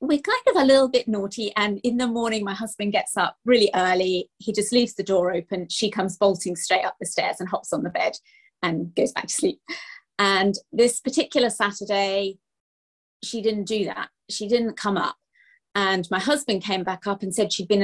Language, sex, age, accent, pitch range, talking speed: English, female, 30-49, British, 200-250 Hz, 210 wpm